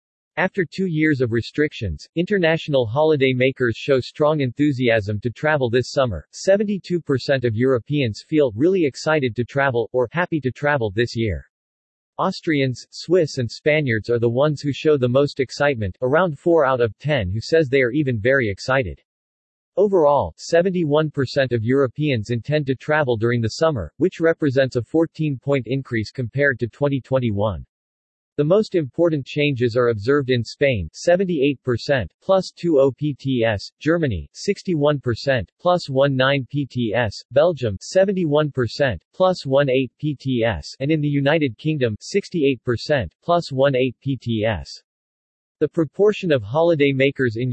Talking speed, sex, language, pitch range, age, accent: 135 wpm, male, English, 120-155 Hz, 40-59, American